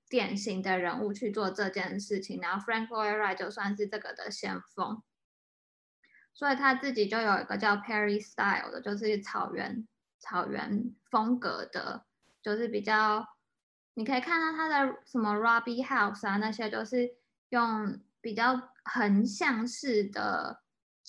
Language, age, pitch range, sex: Chinese, 10-29, 200-245 Hz, female